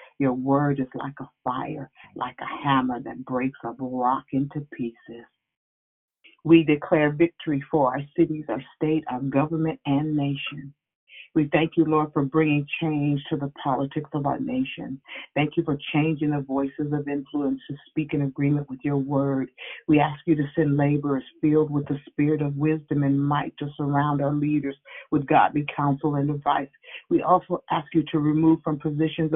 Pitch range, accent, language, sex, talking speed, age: 140-160 Hz, American, English, female, 175 wpm, 40-59